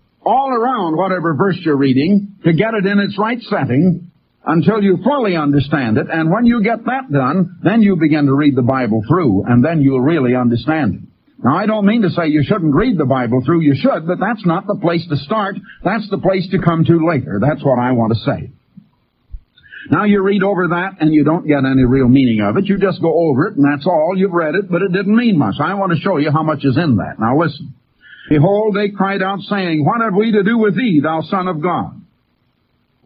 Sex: male